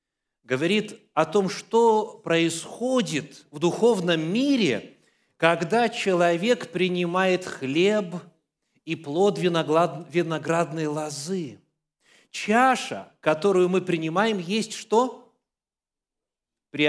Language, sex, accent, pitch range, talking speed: Russian, male, native, 150-200 Hz, 80 wpm